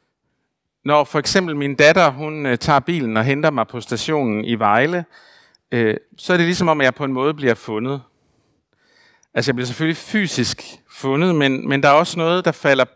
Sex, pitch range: male, 120-155 Hz